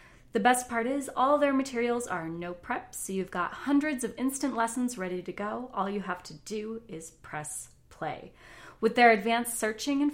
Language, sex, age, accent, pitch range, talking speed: English, female, 30-49, American, 175-240 Hz, 195 wpm